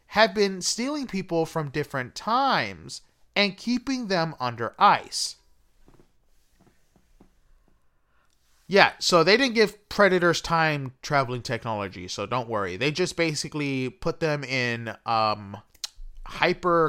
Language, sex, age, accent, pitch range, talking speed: English, male, 30-49, American, 125-195 Hz, 115 wpm